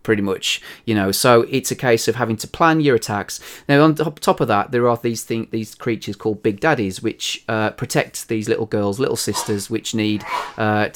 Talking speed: 215 wpm